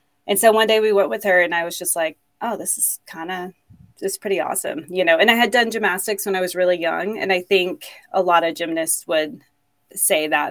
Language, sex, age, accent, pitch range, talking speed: English, female, 30-49, American, 165-195 Hz, 250 wpm